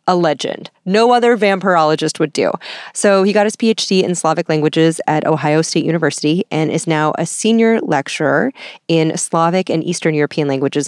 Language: English